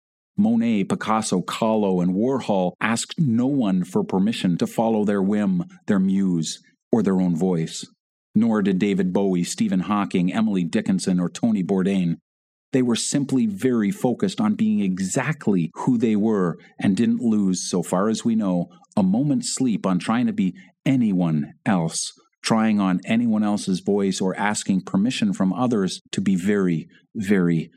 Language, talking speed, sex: English, 160 wpm, male